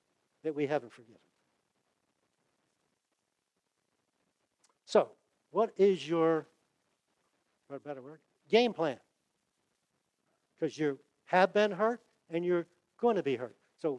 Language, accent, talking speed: English, American, 105 wpm